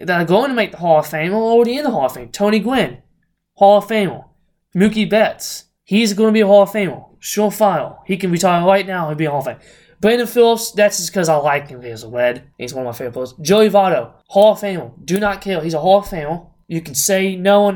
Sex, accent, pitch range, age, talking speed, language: male, American, 140-200 Hz, 20-39, 260 wpm, English